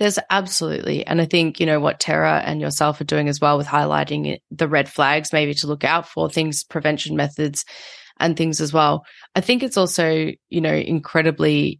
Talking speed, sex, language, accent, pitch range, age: 200 wpm, female, English, Australian, 150-175 Hz, 20-39